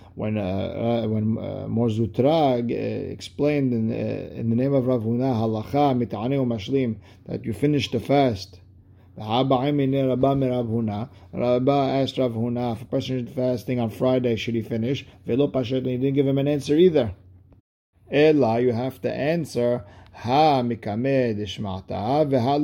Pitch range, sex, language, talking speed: 110-135 Hz, male, English, 120 wpm